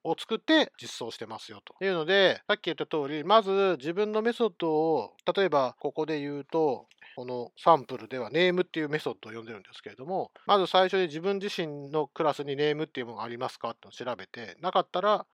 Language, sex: Japanese, male